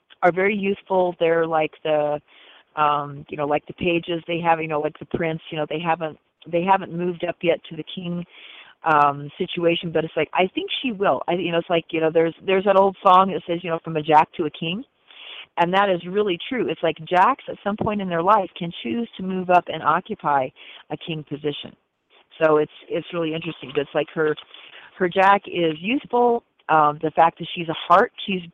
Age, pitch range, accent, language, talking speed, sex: 40-59, 155-185 Hz, American, English, 225 wpm, female